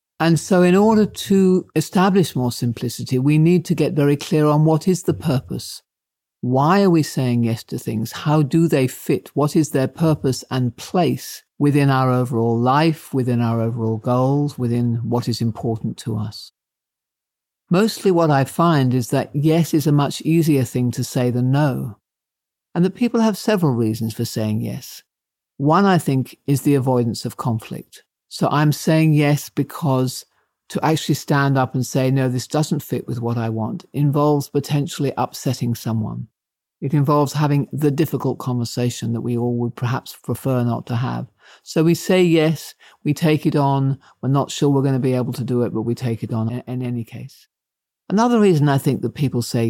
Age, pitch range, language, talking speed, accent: 50-69, 125-160 Hz, English, 185 wpm, British